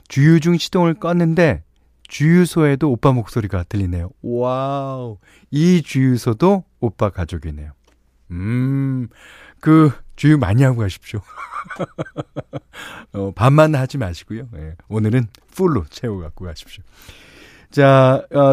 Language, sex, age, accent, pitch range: Korean, male, 40-59, native, 100-155 Hz